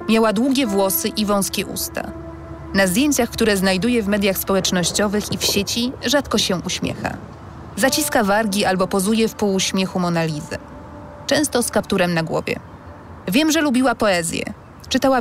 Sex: female